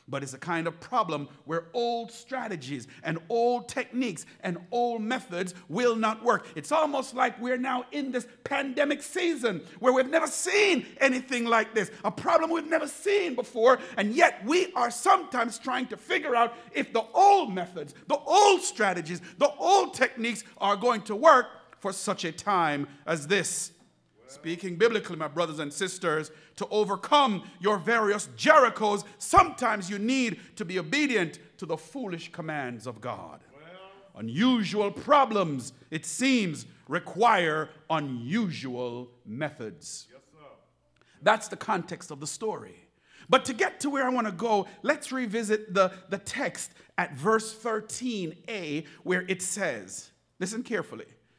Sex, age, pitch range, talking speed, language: male, 50-69, 165-245 Hz, 150 wpm, English